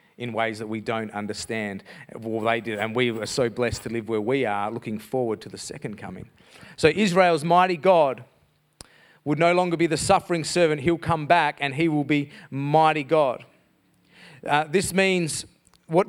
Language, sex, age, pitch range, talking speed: English, male, 40-59, 145-185 Hz, 185 wpm